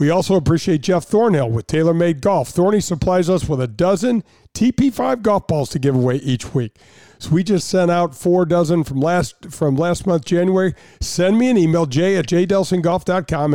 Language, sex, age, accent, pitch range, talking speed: English, male, 50-69, American, 140-180 Hz, 185 wpm